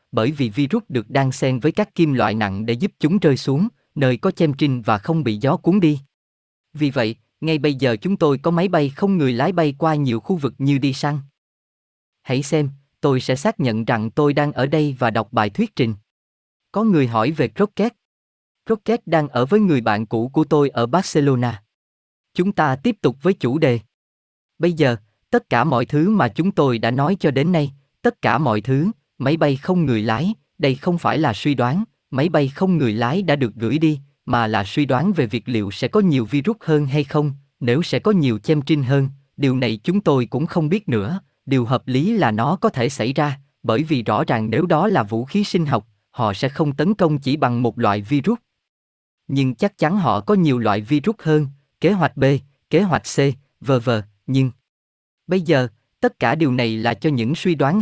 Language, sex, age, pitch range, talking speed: Vietnamese, male, 20-39, 115-165 Hz, 220 wpm